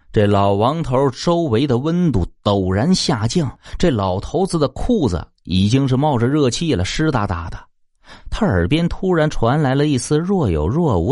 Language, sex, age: Chinese, male, 30-49